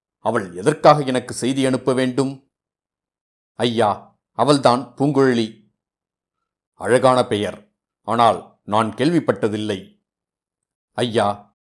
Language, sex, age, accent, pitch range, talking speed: Tamil, male, 50-69, native, 115-135 Hz, 80 wpm